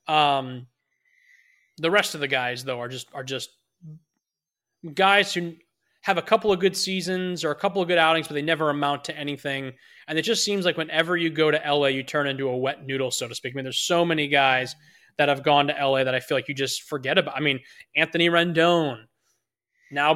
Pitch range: 145-190 Hz